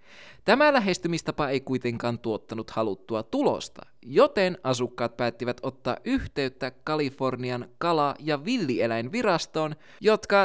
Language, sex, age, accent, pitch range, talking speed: Finnish, male, 20-39, native, 120-180 Hz, 100 wpm